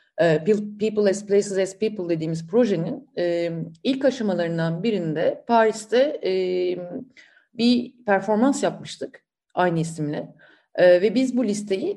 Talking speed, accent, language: 100 wpm, native, Turkish